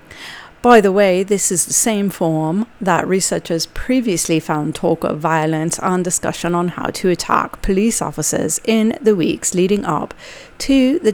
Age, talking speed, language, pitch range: 40-59, 160 wpm, English, 165-205 Hz